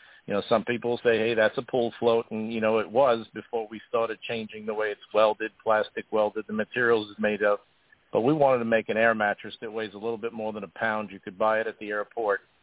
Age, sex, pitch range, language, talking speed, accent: 50-69, male, 100-115 Hz, English, 255 wpm, American